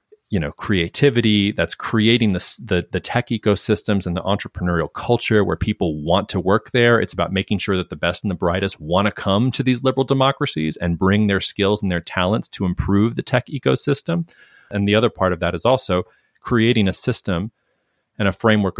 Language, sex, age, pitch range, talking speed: English, male, 30-49, 90-110 Hz, 200 wpm